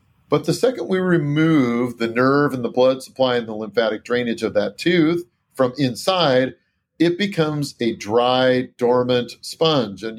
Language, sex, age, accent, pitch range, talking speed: English, male, 40-59, American, 125-160 Hz, 160 wpm